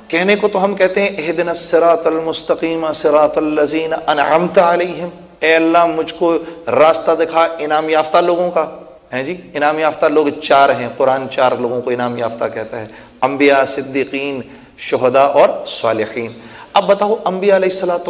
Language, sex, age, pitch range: Urdu, male, 40-59, 145-205 Hz